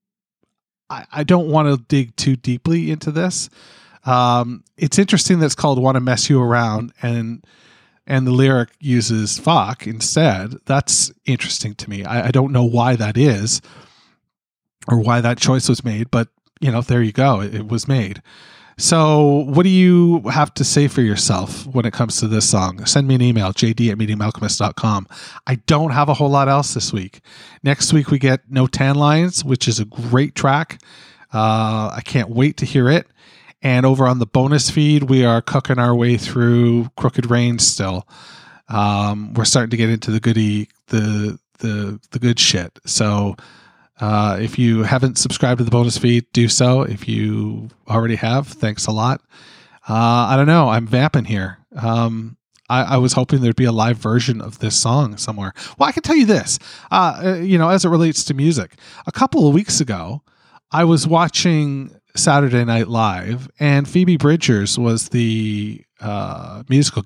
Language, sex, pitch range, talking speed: English, male, 115-145 Hz, 185 wpm